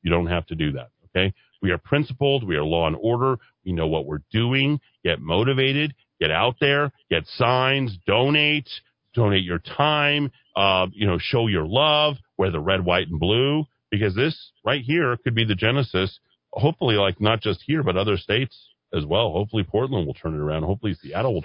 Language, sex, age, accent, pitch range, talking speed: English, male, 40-59, American, 80-115 Hz, 195 wpm